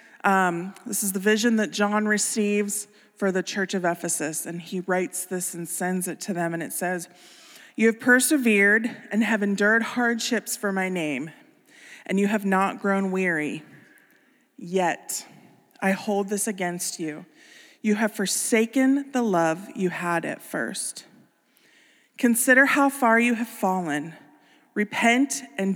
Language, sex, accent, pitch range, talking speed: English, female, American, 185-230 Hz, 150 wpm